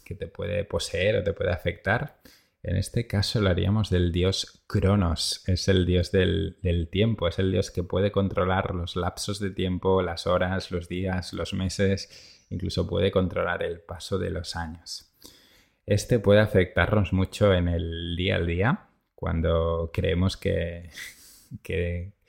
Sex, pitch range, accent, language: male, 85-100 Hz, Spanish, Spanish